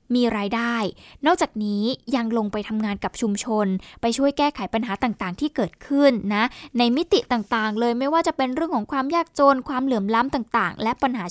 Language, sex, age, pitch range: Thai, female, 10-29, 215-270 Hz